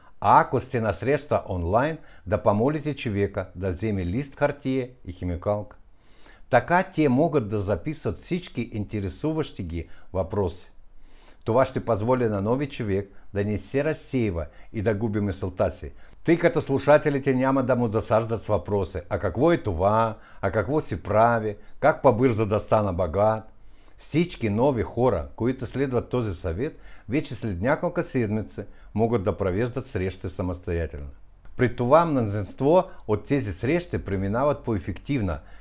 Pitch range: 100-135 Hz